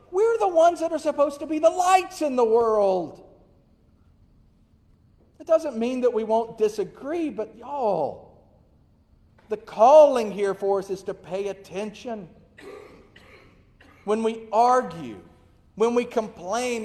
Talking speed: 130 wpm